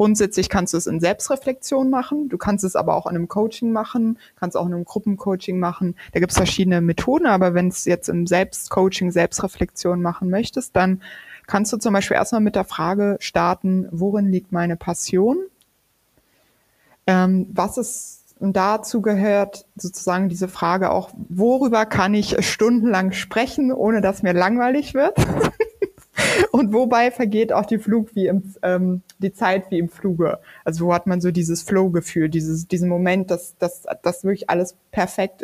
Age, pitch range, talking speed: 20-39, 175-215 Hz, 170 wpm